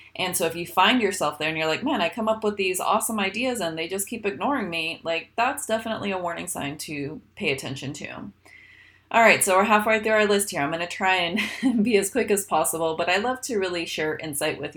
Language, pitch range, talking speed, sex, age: English, 155-210 Hz, 250 wpm, female, 30-49